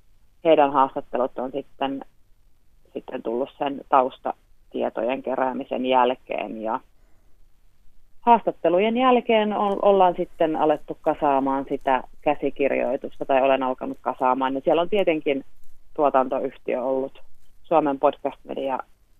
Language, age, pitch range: Finnish, 30-49, 125-155 Hz